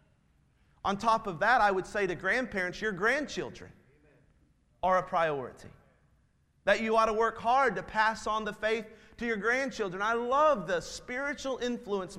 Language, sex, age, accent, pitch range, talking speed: English, male, 30-49, American, 190-235 Hz, 160 wpm